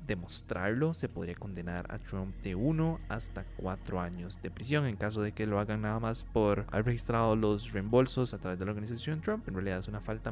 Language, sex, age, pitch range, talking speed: Spanish, male, 20-39, 95-120 Hz, 215 wpm